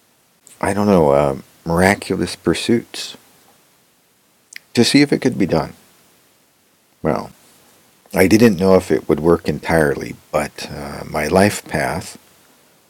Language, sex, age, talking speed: English, male, 50-69, 125 wpm